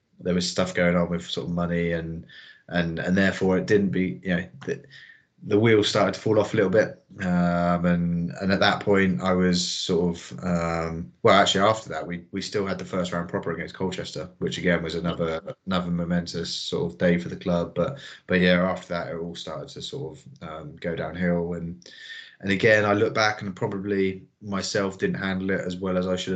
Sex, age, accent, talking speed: male, 20-39, British, 220 wpm